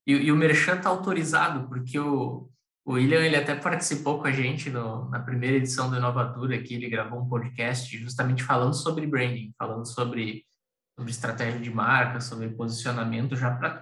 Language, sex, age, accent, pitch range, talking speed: Portuguese, male, 20-39, Brazilian, 120-140 Hz, 170 wpm